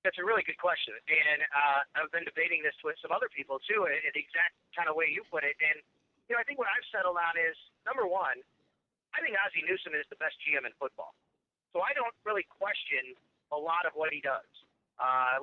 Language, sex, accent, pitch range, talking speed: English, male, American, 170-255 Hz, 235 wpm